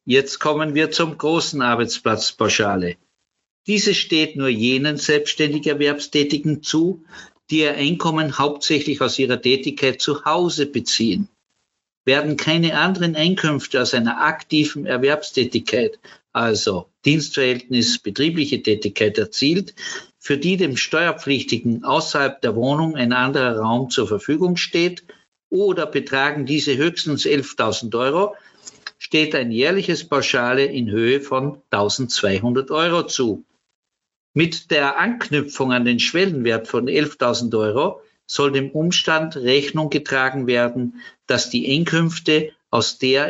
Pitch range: 125-160 Hz